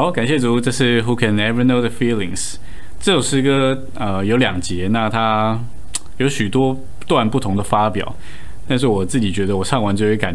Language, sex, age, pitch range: Chinese, male, 20-39, 95-120 Hz